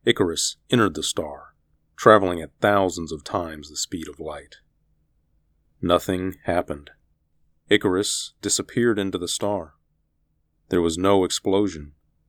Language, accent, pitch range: English, American, 75-95 Hz